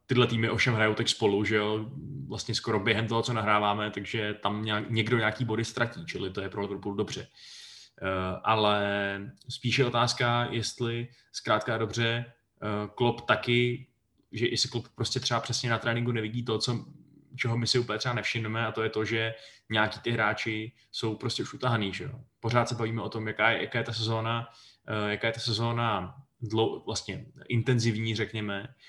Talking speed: 185 wpm